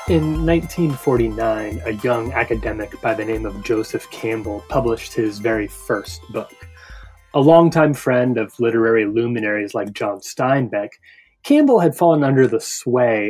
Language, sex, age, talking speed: English, male, 30-49, 140 wpm